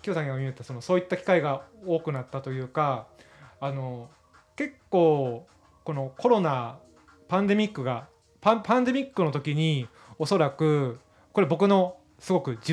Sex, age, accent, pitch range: male, 20-39, native, 130-185 Hz